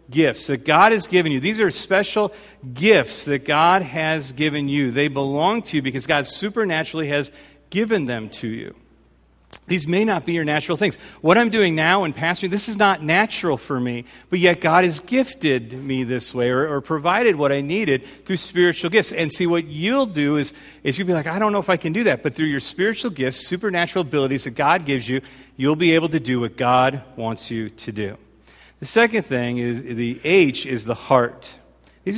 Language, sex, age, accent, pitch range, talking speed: English, male, 40-59, American, 130-180 Hz, 210 wpm